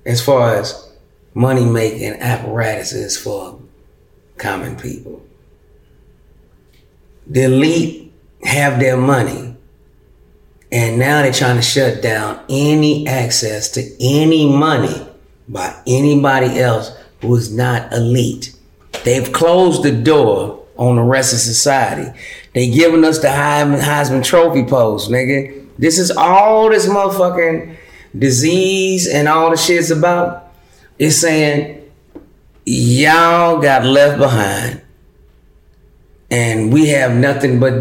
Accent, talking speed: American, 115 wpm